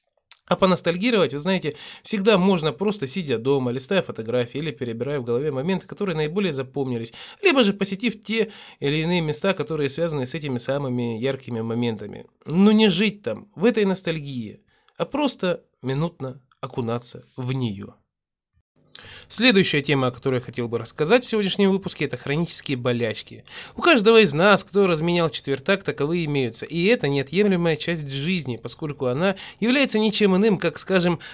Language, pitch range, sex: Russian, 135-195 Hz, male